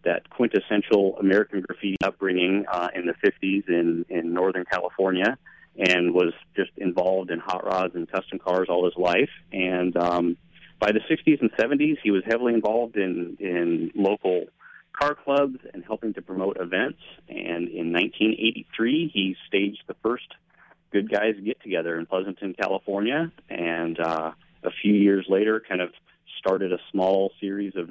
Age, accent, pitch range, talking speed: 30-49, American, 90-105 Hz, 155 wpm